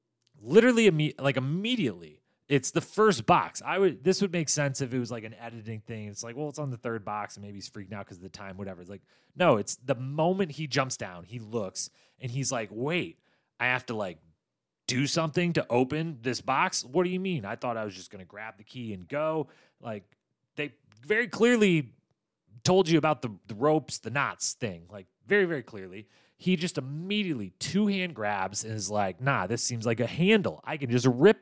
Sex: male